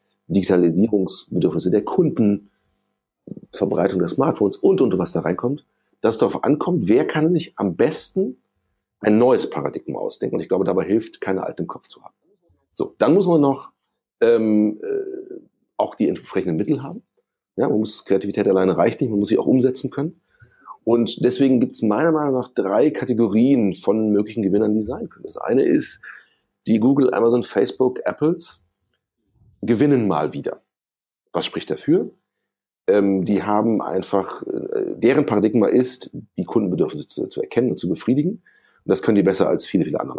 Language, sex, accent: German, male, German